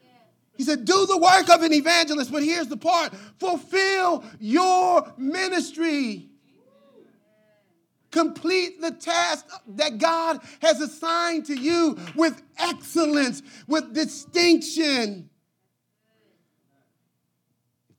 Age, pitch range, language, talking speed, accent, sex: 40-59, 210-330 Hz, English, 95 wpm, American, male